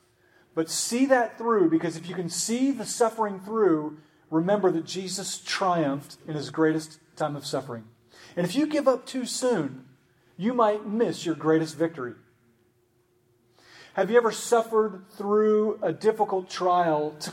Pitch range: 140-190 Hz